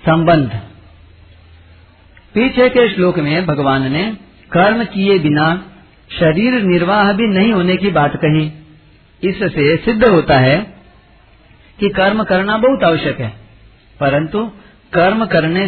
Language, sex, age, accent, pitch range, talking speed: Hindi, male, 50-69, native, 145-190 Hz, 120 wpm